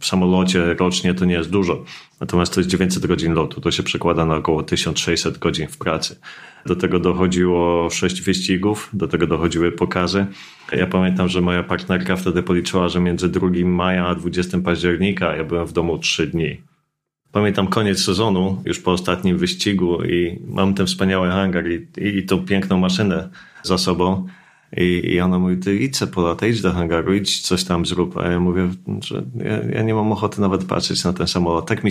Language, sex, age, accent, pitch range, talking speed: Polish, male, 30-49, native, 90-95 Hz, 190 wpm